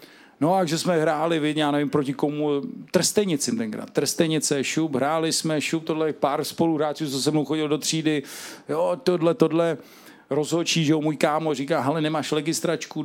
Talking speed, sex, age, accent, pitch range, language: 175 wpm, male, 40-59, Czech, 145-175 Hz, English